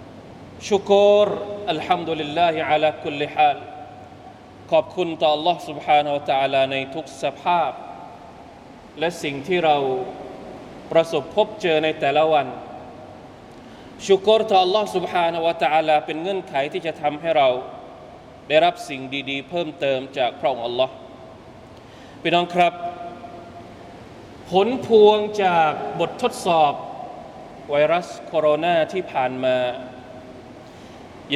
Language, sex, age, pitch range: Thai, male, 20-39, 145-185 Hz